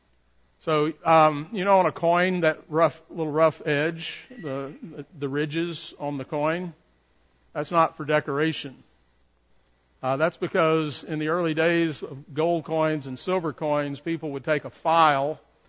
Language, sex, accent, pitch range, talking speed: English, male, American, 125-160 Hz, 155 wpm